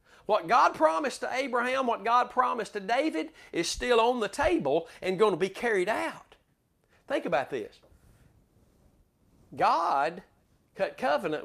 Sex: male